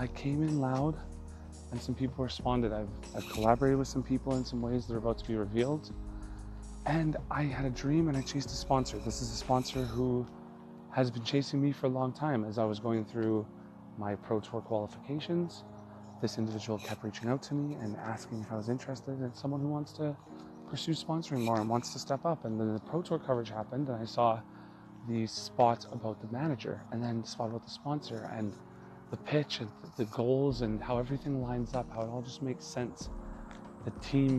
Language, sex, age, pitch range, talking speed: English, male, 30-49, 105-130 Hz, 215 wpm